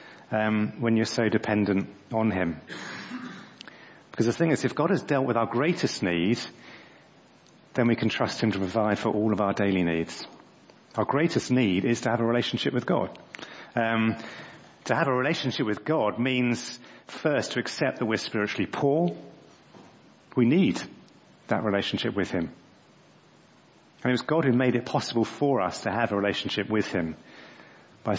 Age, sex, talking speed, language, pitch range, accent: 40-59, male, 170 wpm, English, 105-125 Hz, British